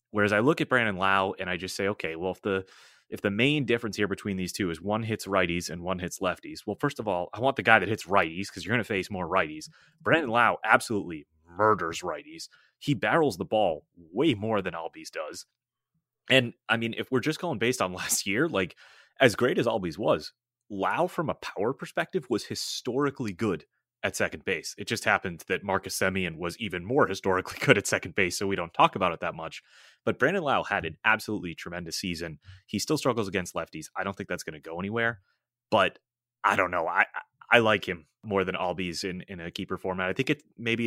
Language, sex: English, male